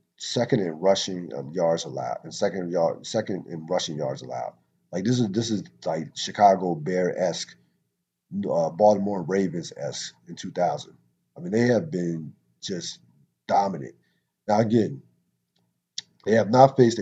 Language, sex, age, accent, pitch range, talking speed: English, male, 40-59, American, 85-105 Hz, 150 wpm